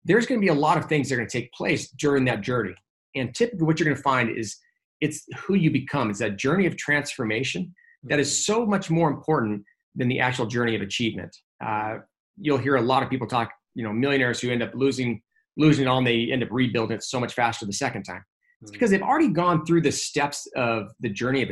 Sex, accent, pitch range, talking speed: male, American, 115-155 Hz, 245 wpm